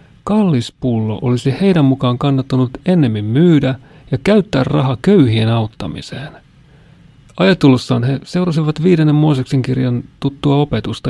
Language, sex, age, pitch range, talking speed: Finnish, male, 40-59, 120-155 Hz, 110 wpm